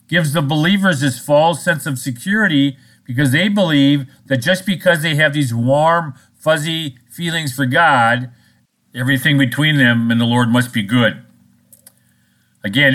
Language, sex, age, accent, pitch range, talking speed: English, male, 50-69, American, 115-150 Hz, 150 wpm